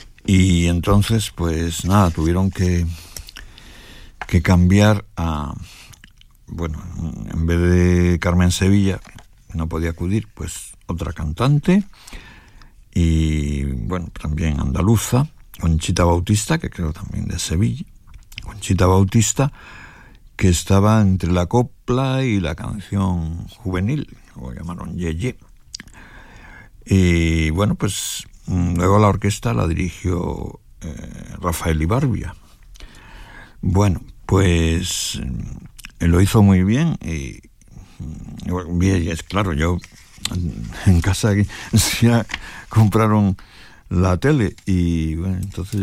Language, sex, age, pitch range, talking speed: Spanish, male, 60-79, 85-105 Hz, 105 wpm